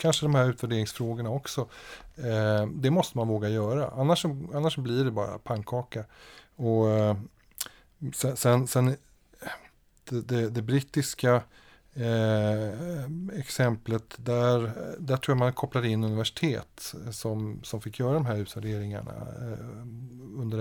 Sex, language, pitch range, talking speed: male, Swedish, 110-140 Hz, 115 wpm